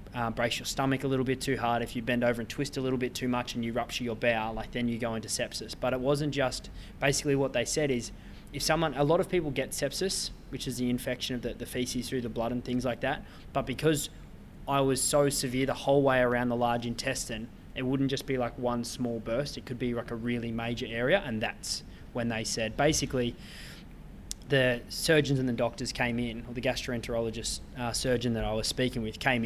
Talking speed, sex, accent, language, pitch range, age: 235 wpm, male, Australian, English, 115-130 Hz, 20-39